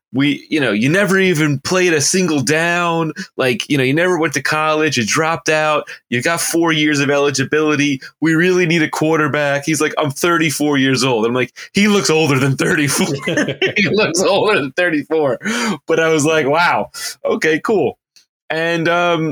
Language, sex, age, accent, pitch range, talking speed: English, male, 20-39, American, 130-160 Hz, 185 wpm